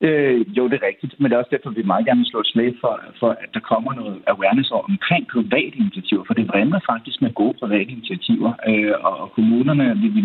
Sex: male